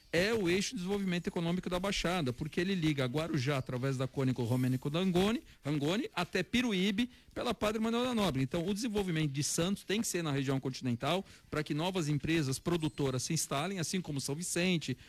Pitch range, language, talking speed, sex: 145-195 Hz, Portuguese, 185 wpm, male